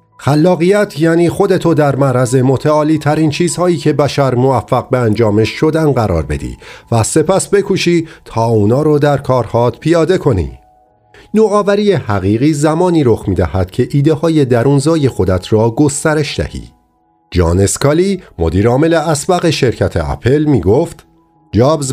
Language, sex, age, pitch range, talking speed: Persian, male, 50-69, 100-155 Hz, 135 wpm